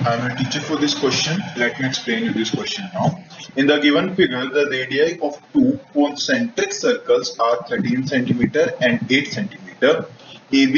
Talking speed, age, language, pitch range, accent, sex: 205 wpm, 20-39, Hindi, 130-180 Hz, native, male